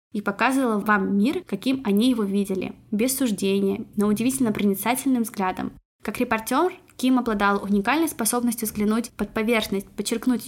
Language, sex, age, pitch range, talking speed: Russian, female, 20-39, 205-250 Hz, 135 wpm